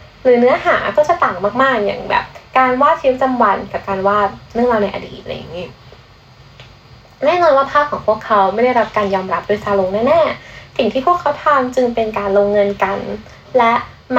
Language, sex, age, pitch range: Thai, female, 10-29, 210-295 Hz